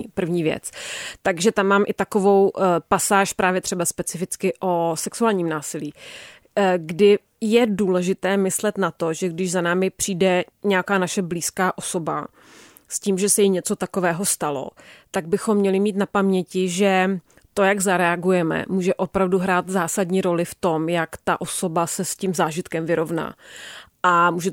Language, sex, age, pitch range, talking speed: Czech, female, 30-49, 175-200 Hz, 155 wpm